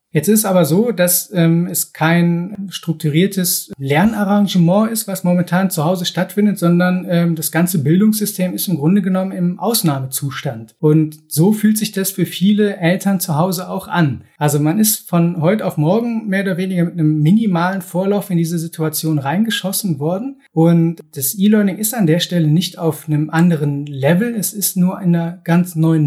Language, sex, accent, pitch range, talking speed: German, male, German, 155-185 Hz, 175 wpm